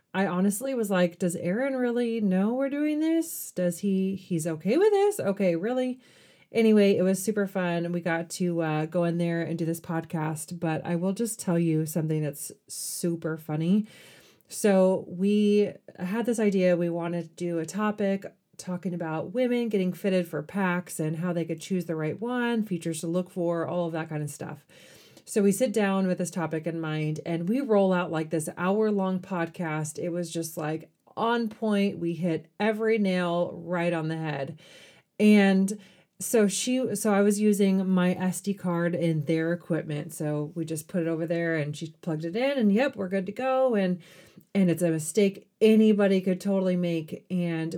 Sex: female